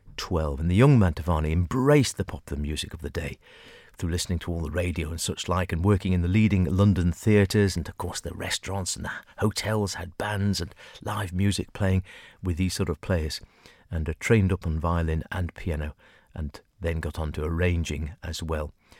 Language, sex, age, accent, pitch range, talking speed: English, male, 50-69, British, 85-110 Hz, 200 wpm